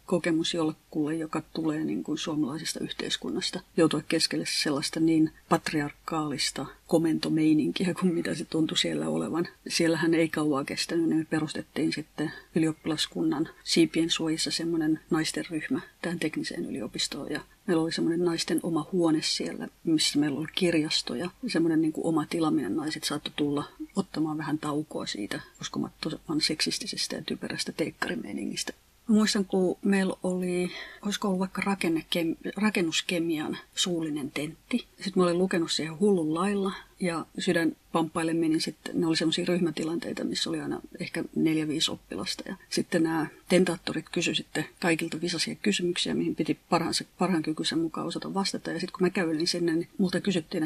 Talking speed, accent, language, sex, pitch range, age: 145 wpm, native, Finnish, female, 160-185 Hz, 30-49